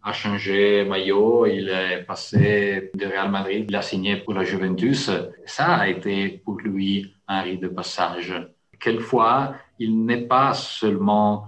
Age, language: 40-59, French